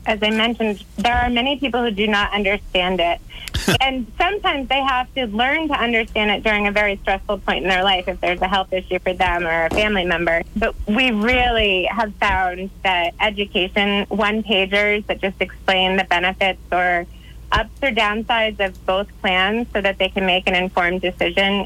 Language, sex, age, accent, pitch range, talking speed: English, female, 30-49, American, 175-210 Hz, 190 wpm